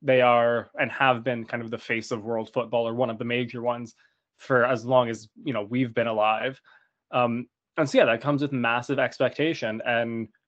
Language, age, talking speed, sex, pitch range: English, 20-39, 210 wpm, male, 115-130 Hz